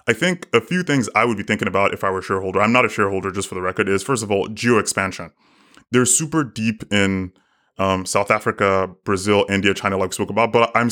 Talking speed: 240 wpm